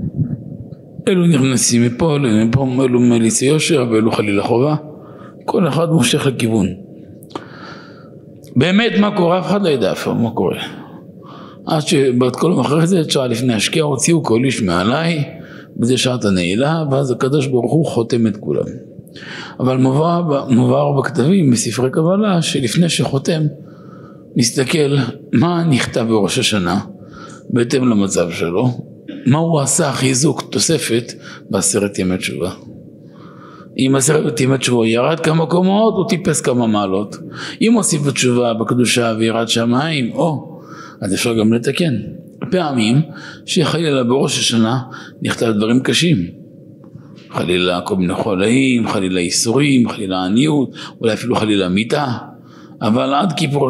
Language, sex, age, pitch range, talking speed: Hebrew, male, 50-69, 120-160 Hz, 125 wpm